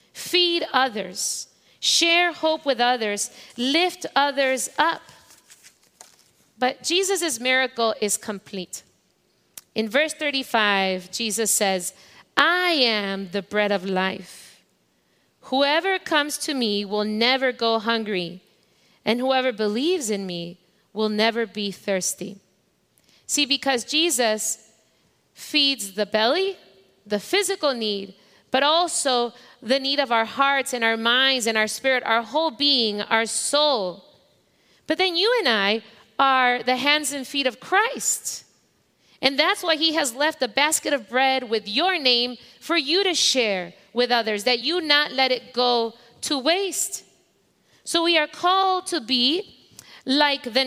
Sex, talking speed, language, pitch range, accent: female, 135 wpm, English, 215-295 Hz, American